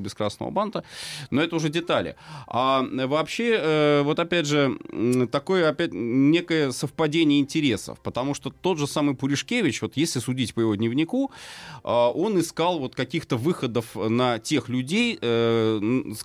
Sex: male